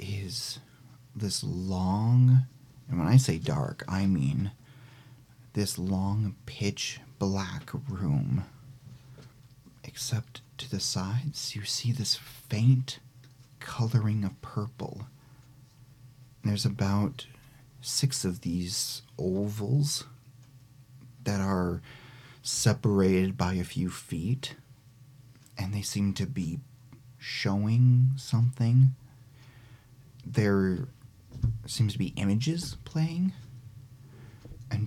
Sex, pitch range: male, 105-130 Hz